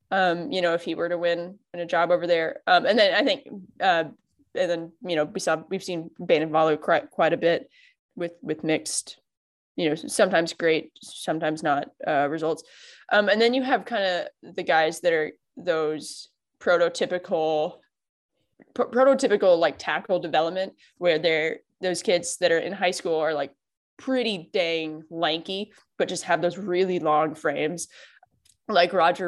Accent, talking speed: American, 175 wpm